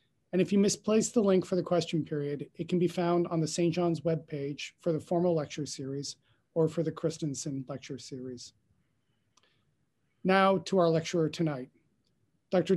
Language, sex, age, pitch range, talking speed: English, male, 40-59, 145-180 Hz, 170 wpm